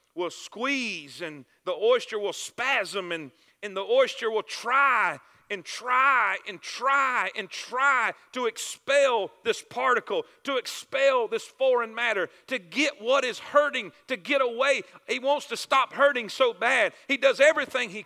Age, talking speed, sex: 40-59, 155 wpm, male